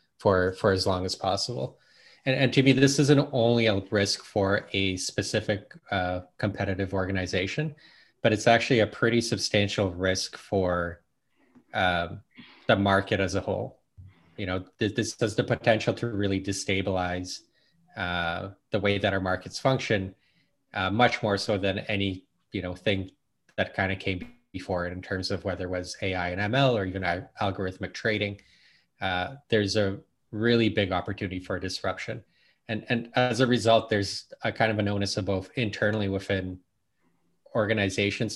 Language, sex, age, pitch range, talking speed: English, male, 20-39, 95-110 Hz, 165 wpm